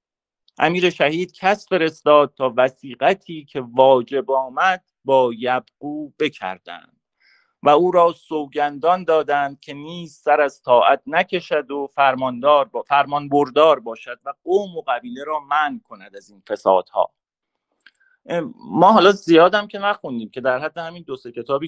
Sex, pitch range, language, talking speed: male, 125-180 Hz, English, 140 wpm